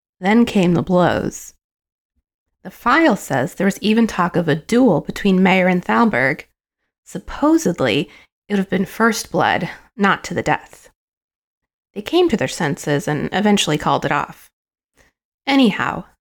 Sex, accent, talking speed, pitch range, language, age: female, American, 150 wpm, 175-215 Hz, English, 30-49